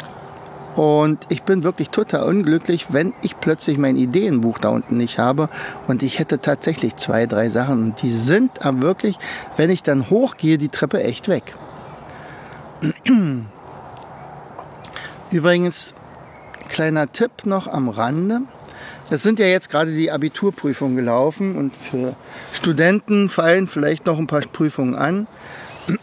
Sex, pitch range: male, 130-175 Hz